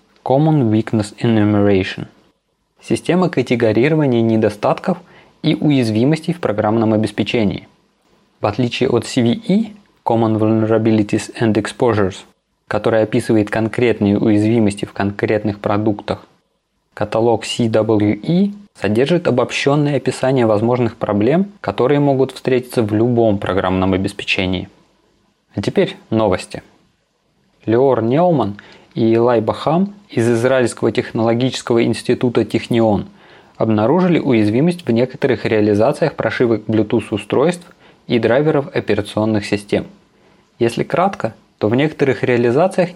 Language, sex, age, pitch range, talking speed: Russian, male, 20-39, 110-140 Hz, 95 wpm